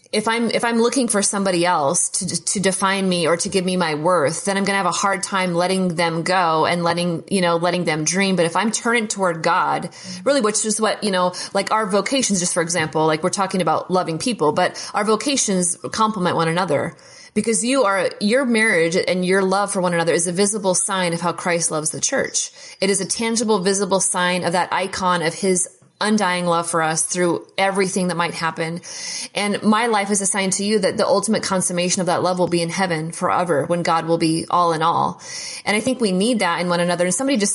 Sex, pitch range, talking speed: female, 170-200 Hz, 230 wpm